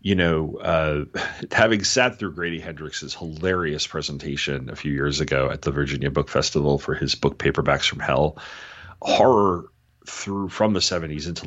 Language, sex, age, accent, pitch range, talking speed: English, male, 40-59, American, 75-100 Hz, 160 wpm